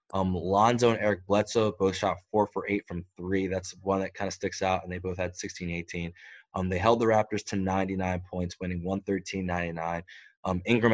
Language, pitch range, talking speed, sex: English, 90-110 Hz, 195 wpm, male